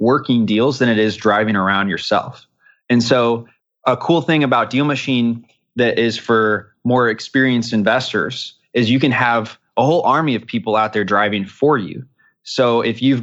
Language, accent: English, American